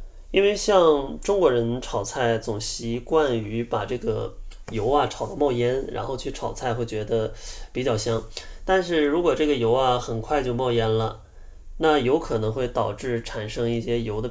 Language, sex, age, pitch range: Chinese, male, 20-39, 110-130 Hz